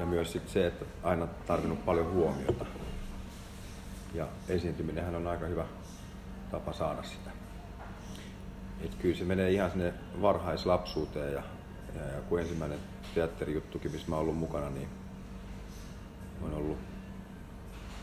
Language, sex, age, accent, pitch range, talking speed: Finnish, male, 40-59, native, 80-95 Hz, 120 wpm